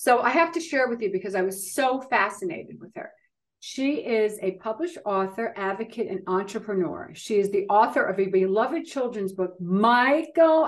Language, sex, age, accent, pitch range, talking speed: English, female, 50-69, American, 205-275 Hz, 180 wpm